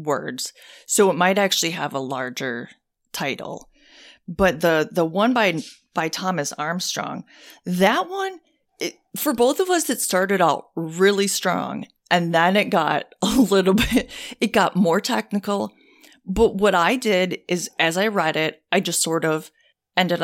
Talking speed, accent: 160 wpm, American